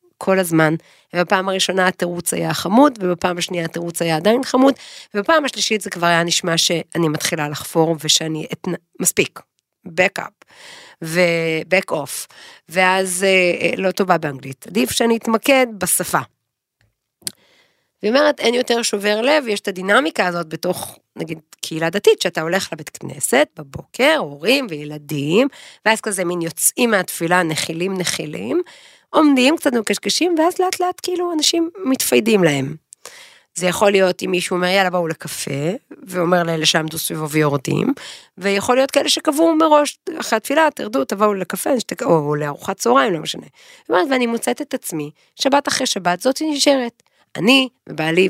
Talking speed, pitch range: 145 wpm, 165-260 Hz